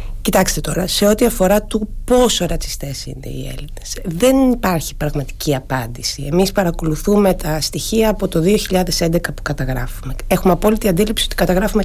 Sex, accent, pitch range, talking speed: female, native, 155-215 Hz, 145 wpm